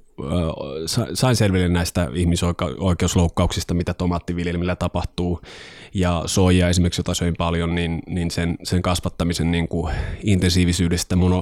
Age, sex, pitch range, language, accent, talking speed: 20-39, male, 85-95 Hz, Finnish, native, 85 wpm